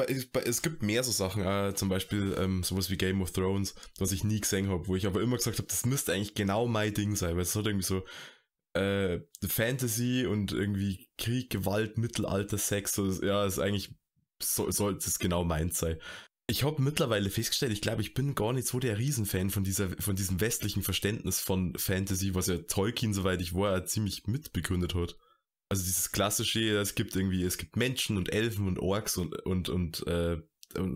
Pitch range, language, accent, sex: 90-110 Hz, German, German, male